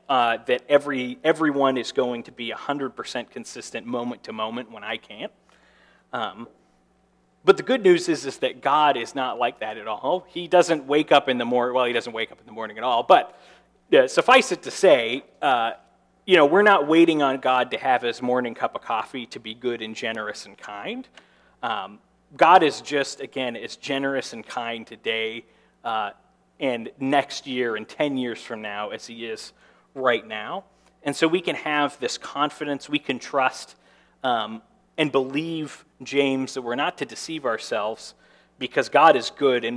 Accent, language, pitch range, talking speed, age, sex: American, English, 125-175 Hz, 190 wpm, 40-59, male